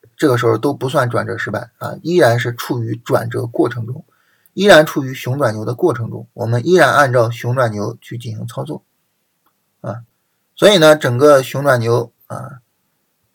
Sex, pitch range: male, 115-140 Hz